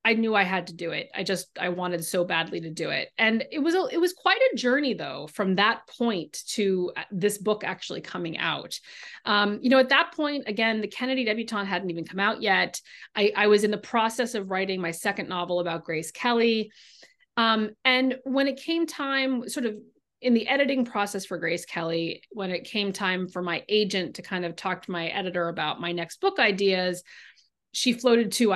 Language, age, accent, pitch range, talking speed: English, 30-49, American, 180-255 Hz, 210 wpm